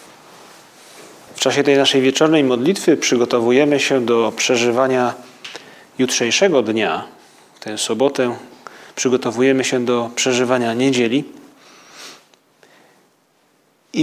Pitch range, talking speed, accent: 120-145 Hz, 85 wpm, native